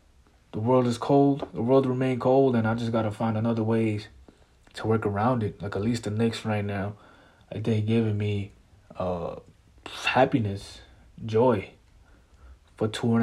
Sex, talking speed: male, 165 wpm